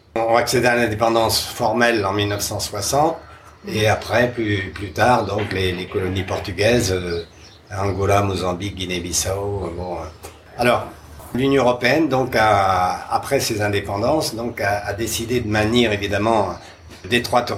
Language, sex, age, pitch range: French, male, 50-69, 100-120 Hz